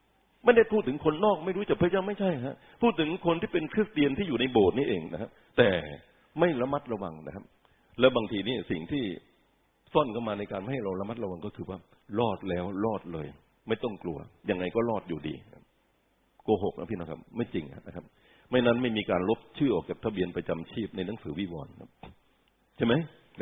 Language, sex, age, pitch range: Thai, male, 60-79, 100-140 Hz